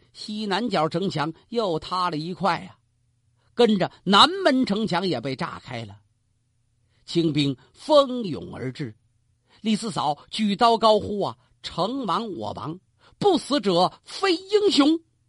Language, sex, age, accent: Chinese, male, 50-69, native